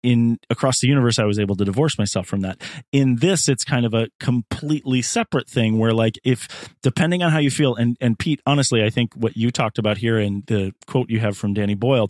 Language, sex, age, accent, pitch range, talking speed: English, male, 30-49, American, 105-140 Hz, 240 wpm